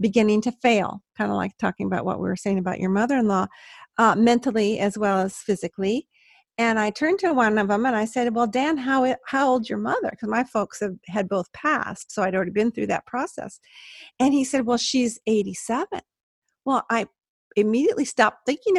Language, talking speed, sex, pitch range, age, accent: English, 200 wpm, female, 205-270 Hz, 50-69, American